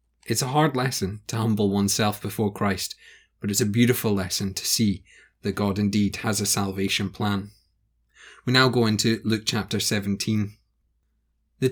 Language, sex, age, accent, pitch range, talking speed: English, male, 30-49, British, 100-125 Hz, 160 wpm